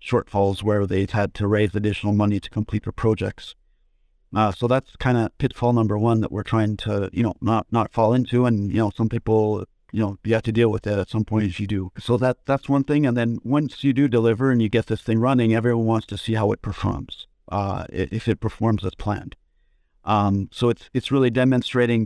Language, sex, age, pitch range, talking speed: English, male, 50-69, 105-120 Hz, 230 wpm